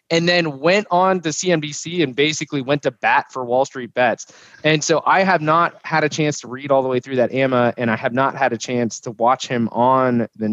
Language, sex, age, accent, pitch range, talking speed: English, male, 20-39, American, 115-150 Hz, 245 wpm